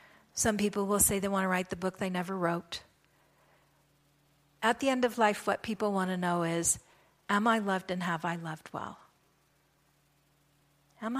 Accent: American